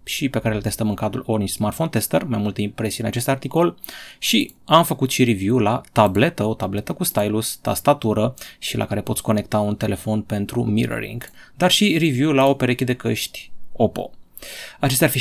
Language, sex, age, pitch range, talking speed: Romanian, male, 20-39, 105-130 Hz, 195 wpm